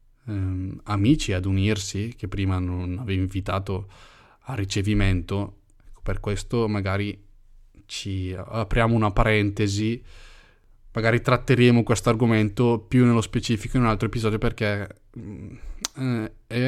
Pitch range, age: 95-110 Hz, 20-39